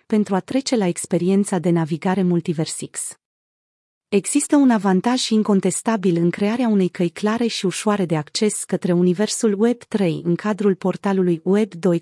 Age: 30-49